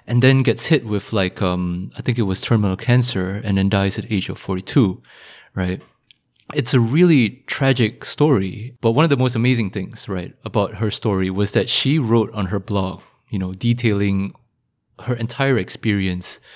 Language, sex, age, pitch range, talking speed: English, male, 20-39, 95-115 Hz, 180 wpm